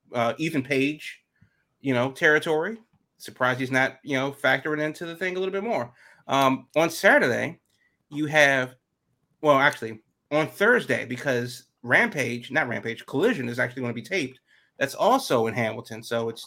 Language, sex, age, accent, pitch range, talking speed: English, male, 30-49, American, 120-155 Hz, 165 wpm